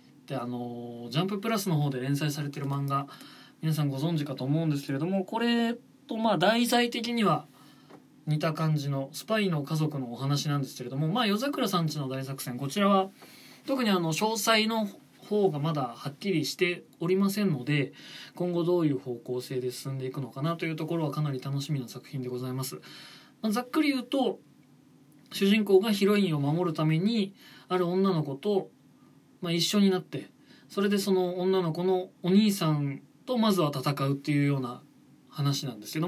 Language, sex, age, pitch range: Japanese, male, 20-39, 140-190 Hz